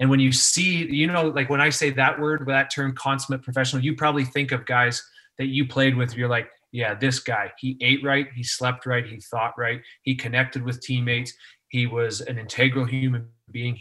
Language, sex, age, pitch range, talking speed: English, male, 30-49, 120-130 Hz, 215 wpm